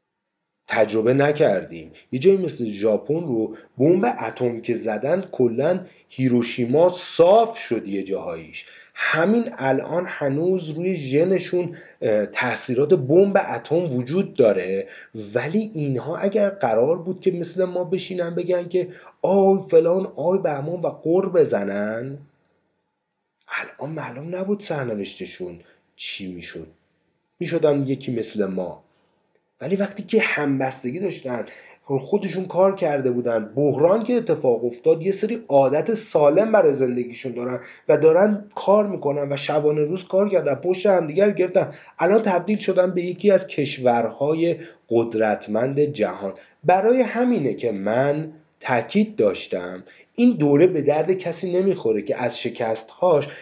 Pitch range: 125-190 Hz